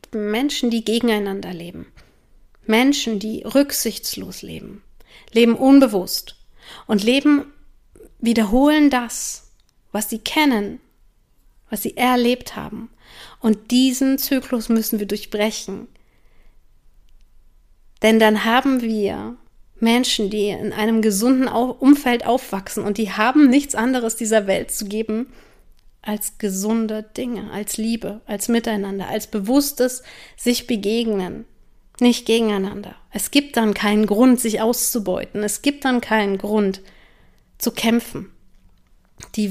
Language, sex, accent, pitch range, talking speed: German, female, German, 205-245 Hz, 115 wpm